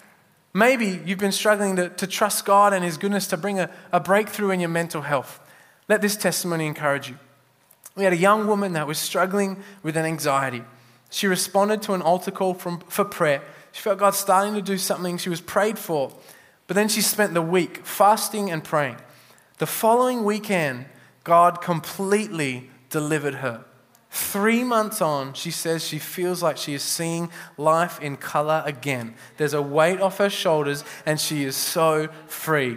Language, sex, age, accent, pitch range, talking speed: English, male, 20-39, Australian, 155-200 Hz, 180 wpm